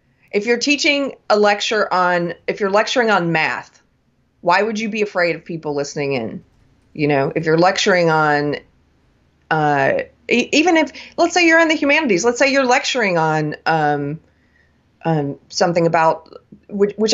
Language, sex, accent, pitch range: English, female, American, 160-220 Hz